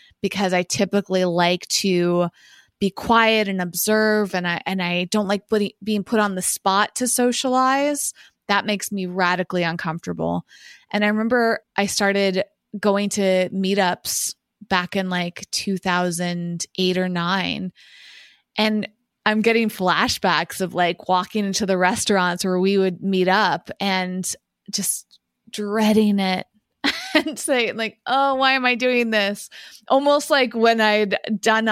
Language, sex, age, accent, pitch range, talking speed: English, female, 20-39, American, 185-225 Hz, 140 wpm